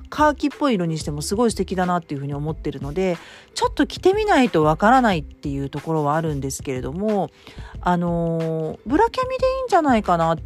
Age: 40-59